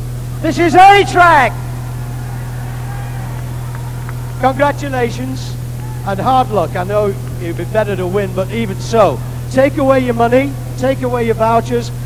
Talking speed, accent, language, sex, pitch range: 130 wpm, British, English, male, 120-155 Hz